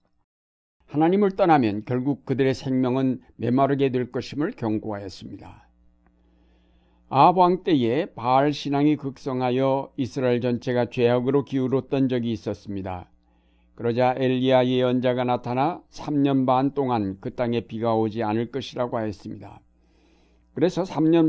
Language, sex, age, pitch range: Korean, male, 60-79, 105-135 Hz